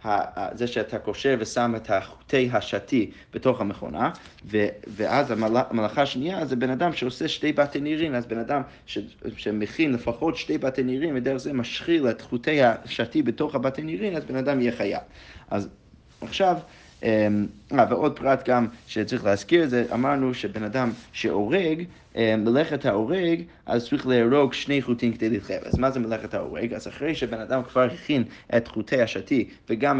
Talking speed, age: 160 wpm, 30-49